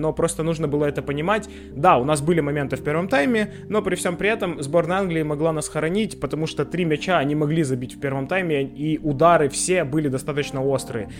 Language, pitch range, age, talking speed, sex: Ukrainian, 140-175 Hz, 20-39, 215 wpm, male